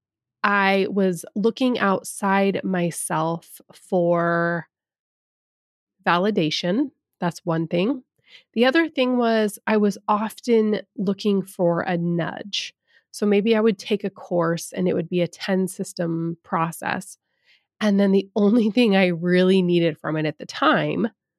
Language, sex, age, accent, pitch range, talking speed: English, female, 20-39, American, 170-210 Hz, 135 wpm